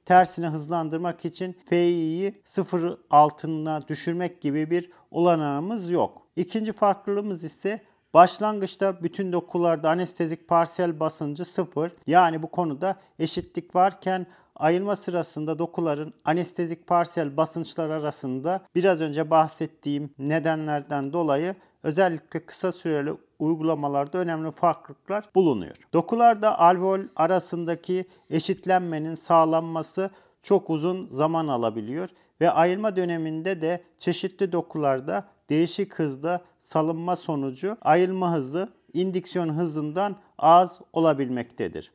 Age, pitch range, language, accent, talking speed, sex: 40-59, 160-185 Hz, Turkish, native, 100 wpm, male